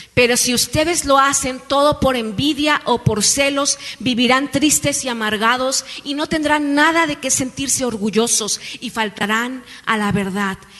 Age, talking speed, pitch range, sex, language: 40-59, 155 wpm, 210-265 Hz, female, Spanish